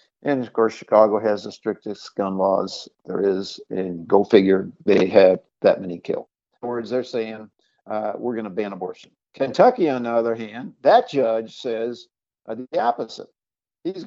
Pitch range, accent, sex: 110-165 Hz, American, male